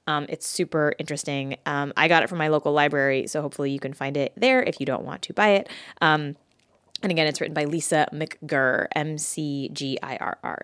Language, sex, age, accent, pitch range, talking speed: English, female, 20-39, American, 155-215 Hz, 195 wpm